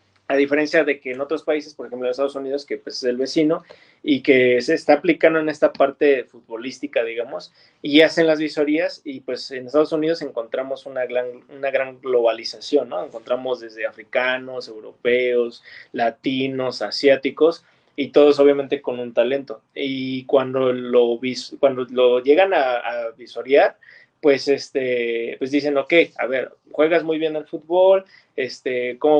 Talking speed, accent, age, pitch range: 155 wpm, Mexican, 30-49, 125-165 Hz